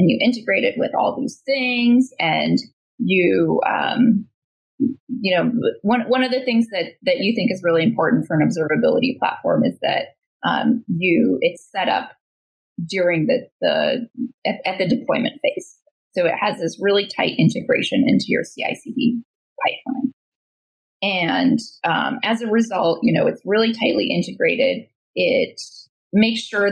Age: 20-39